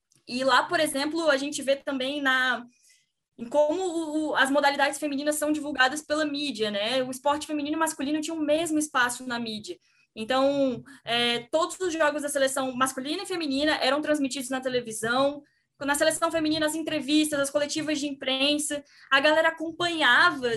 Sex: female